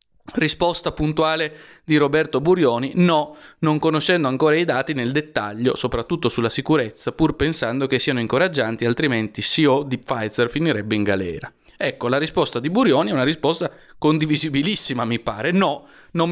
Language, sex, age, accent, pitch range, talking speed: Italian, male, 20-39, native, 120-155 Hz, 150 wpm